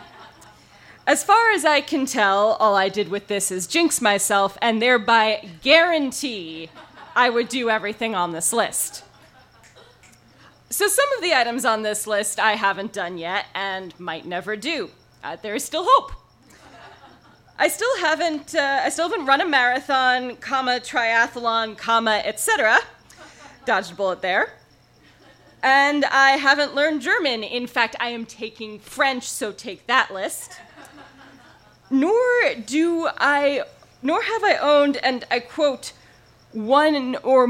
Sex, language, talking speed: female, English, 140 wpm